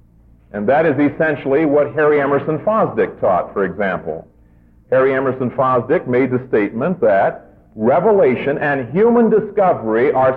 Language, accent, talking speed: English, American, 135 wpm